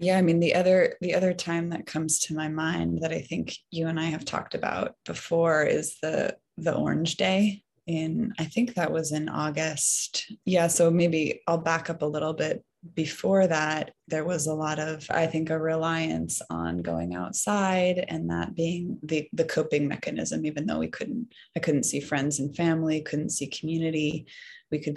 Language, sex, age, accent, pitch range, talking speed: English, female, 20-39, American, 150-170 Hz, 190 wpm